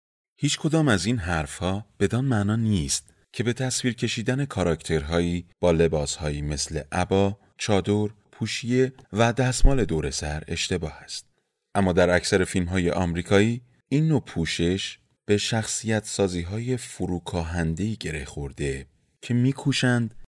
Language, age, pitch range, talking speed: Persian, 30-49, 85-120 Hz, 125 wpm